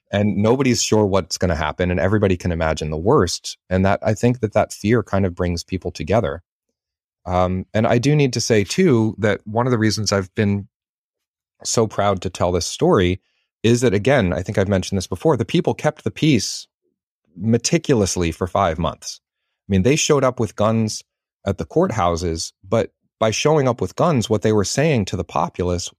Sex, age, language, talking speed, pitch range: male, 30-49, English, 200 wpm, 85-110 Hz